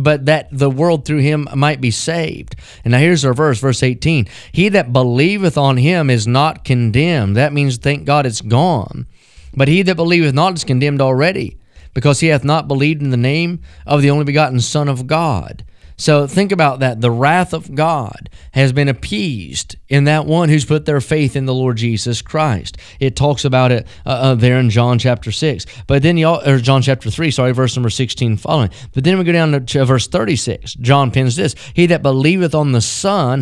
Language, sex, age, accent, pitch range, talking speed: English, male, 30-49, American, 125-155 Hz, 210 wpm